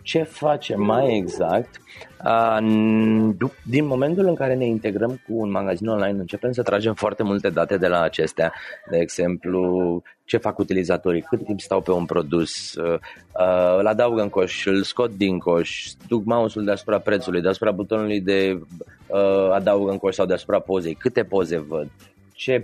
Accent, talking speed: native, 155 wpm